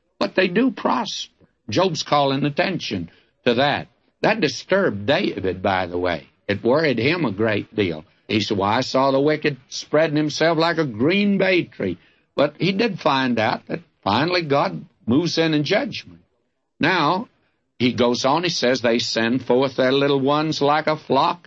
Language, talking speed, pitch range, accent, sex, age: English, 175 wpm, 115-165 Hz, American, male, 60-79